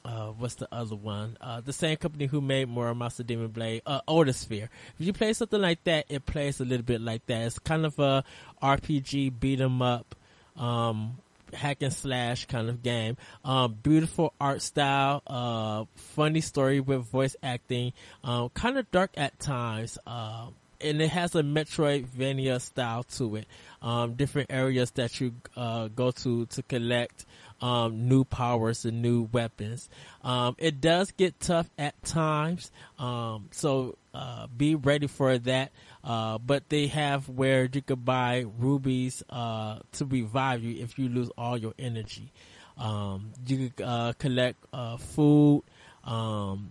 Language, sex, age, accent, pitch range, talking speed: English, male, 20-39, American, 115-140 Hz, 160 wpm